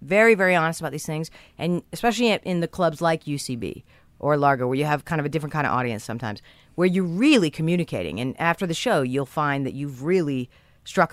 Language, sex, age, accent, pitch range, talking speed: English, female, 40-59, American, 130-170 Hz, 215 wpm